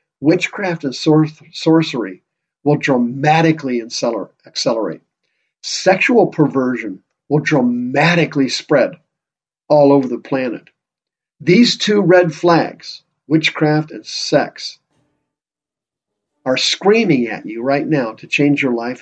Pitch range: 125-155 Hz